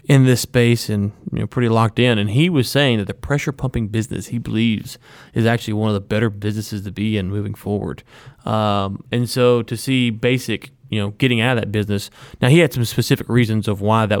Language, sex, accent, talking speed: English, male, American, 225 wpm